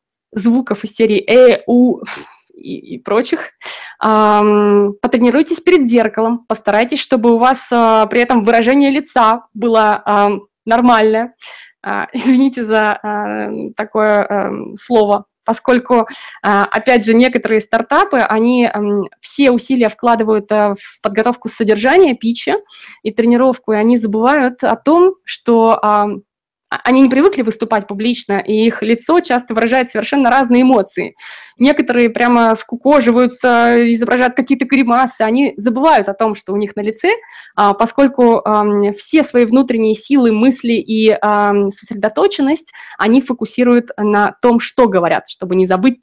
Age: 20-39